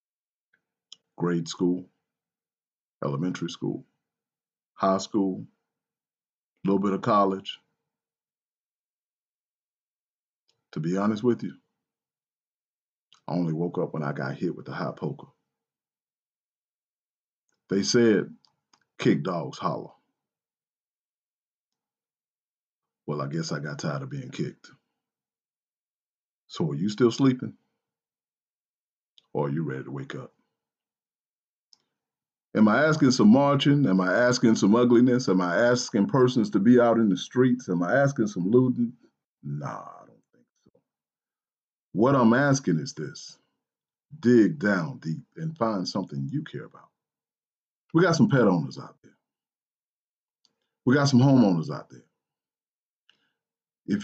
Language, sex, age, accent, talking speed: English, male, 40-59, American, 125 wpm